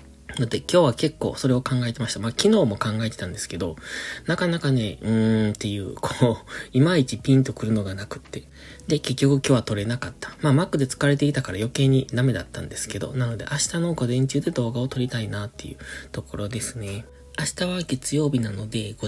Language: Japanese